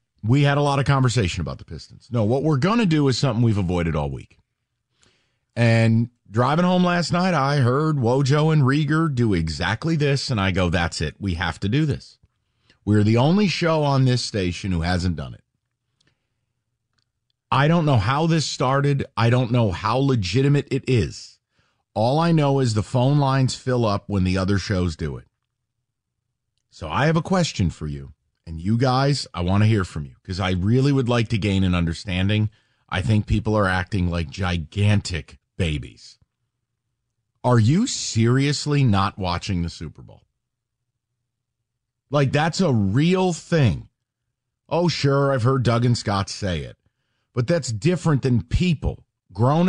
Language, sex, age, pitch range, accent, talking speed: English, male, 40-59, 100-135 Hz, American, 175 wpm